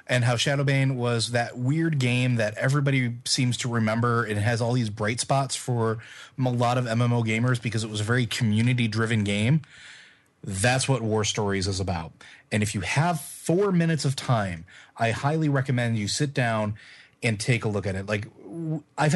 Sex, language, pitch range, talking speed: male, English, 105-130 Hz, 185 wpm